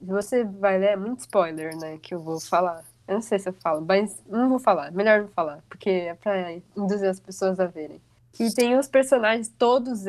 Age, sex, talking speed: 20-39, female, 225 wpm